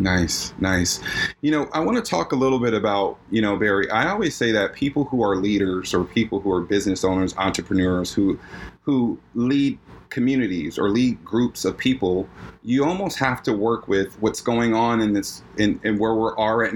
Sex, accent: male, American